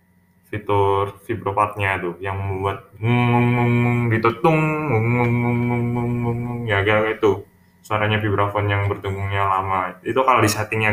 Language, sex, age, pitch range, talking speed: Indonesian, male, 10-29, 95-115 Hz, 115 wpm